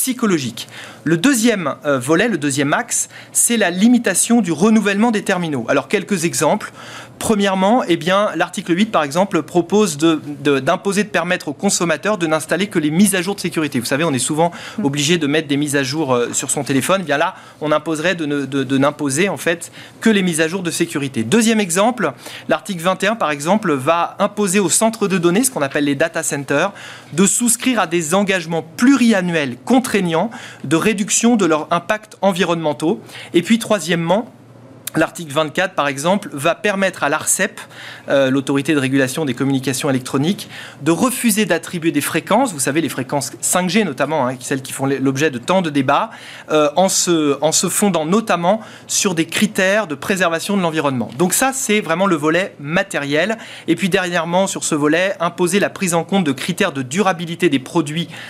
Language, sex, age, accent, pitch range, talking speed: French, male, 30-49, French, 150-195 Hz, 185 wpm